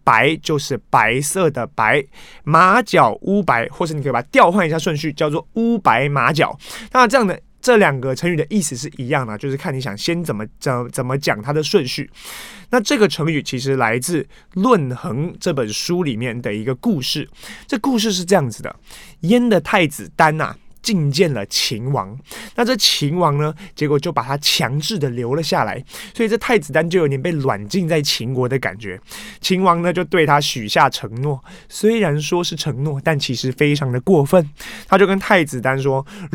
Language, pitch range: Chinese, 135-195 Hz